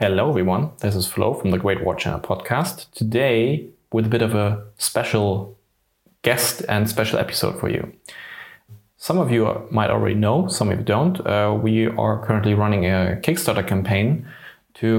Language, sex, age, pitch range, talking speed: English, male, 30-49, 100-115 Hz, 170 wpm